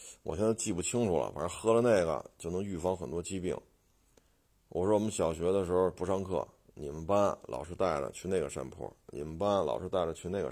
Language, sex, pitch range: Chinese, male, 85-100 Hz